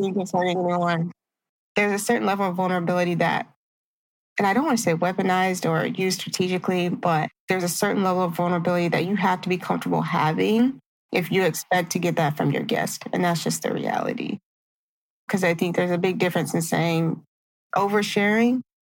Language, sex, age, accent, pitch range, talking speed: English, female, 20-39, American, 170-190 Hz, 180 wpm